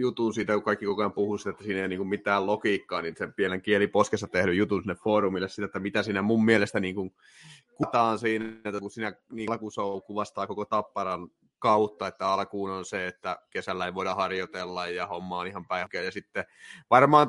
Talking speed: 195 wpm